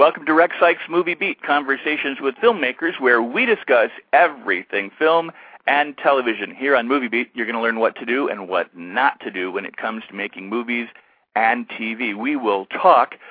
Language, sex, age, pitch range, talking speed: English, male, 50-69, 115-150 Hz, 195 wpm